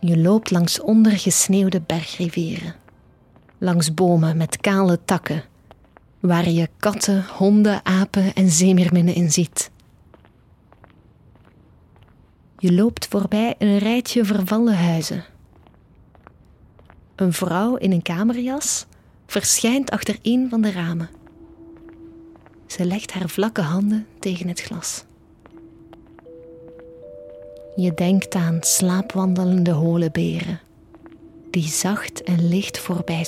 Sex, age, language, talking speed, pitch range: female, 30-49, Dutch, 100 wpm, 155-200 Hz